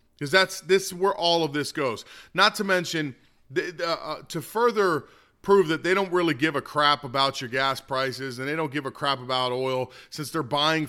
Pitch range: 140-175 Hz